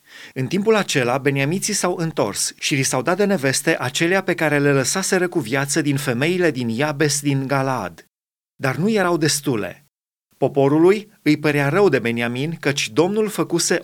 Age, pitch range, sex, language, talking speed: 30-49, 140-175 Hz, male, Romanian, 160 wpm